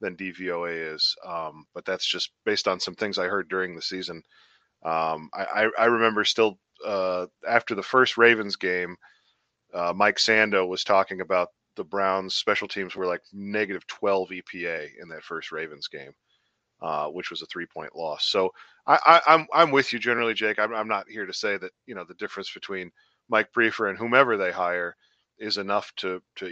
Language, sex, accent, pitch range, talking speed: English, male, American, 95-115 Hz, 195 wpm